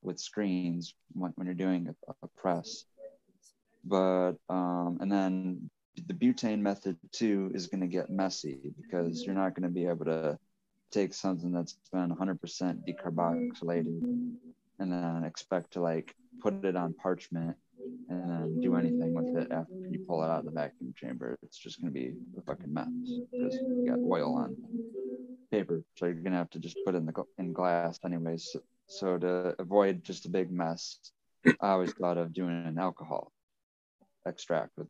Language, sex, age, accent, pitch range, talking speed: English, male, 20-39, American, 85-100 Hz, 170 wpm